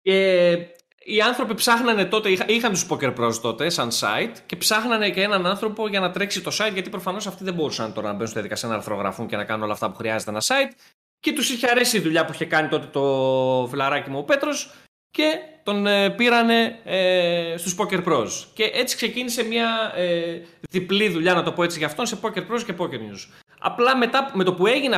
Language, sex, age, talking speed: Greek, male, 20-39, 220 wpm